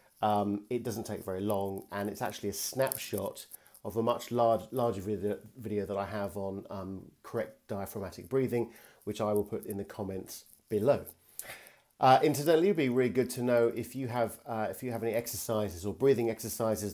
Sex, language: male, English